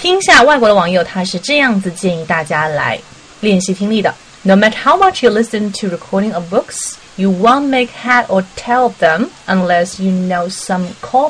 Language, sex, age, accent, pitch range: Chinese, female, 30-49, native, 180-245 Hz